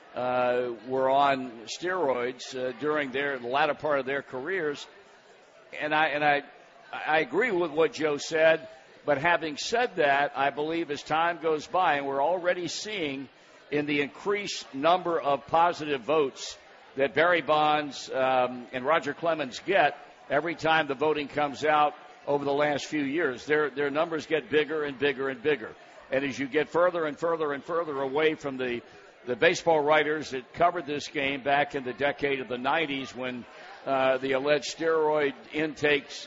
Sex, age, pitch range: male, 60-79, 135-160 Hz